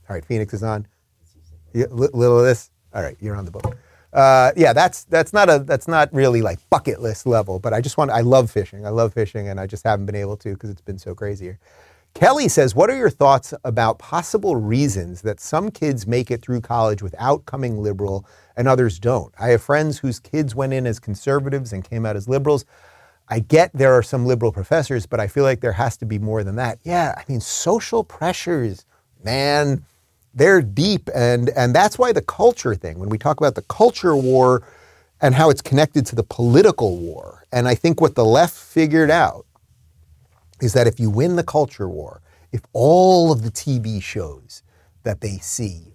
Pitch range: 100-135 Hz